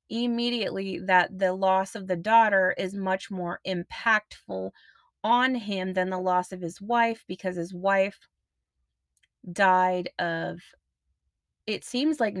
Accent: American